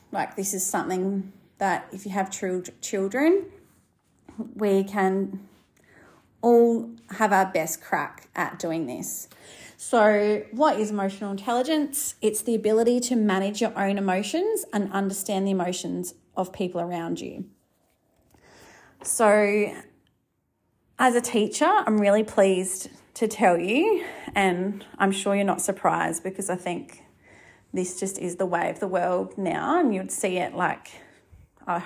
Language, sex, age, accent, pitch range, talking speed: English, female, 30-49, Australian, 185-220 Hz, 140 wpm